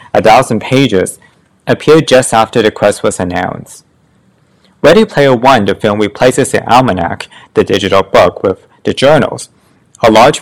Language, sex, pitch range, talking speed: English, male, 100-130 Hz, 150 wpm